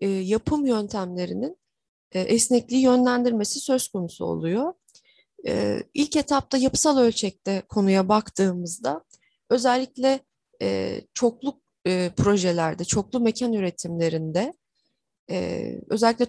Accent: native